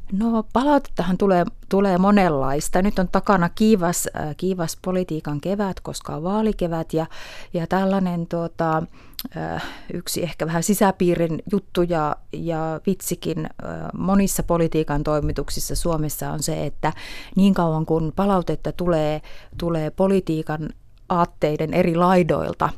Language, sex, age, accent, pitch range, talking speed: Finnish, female, 30-49, native, 160-185 Hz, 115 wpm